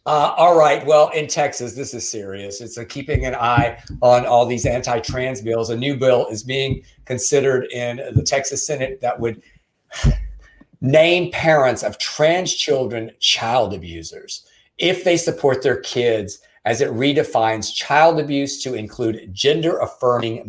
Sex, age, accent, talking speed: male, 50-69, American, 150 wpm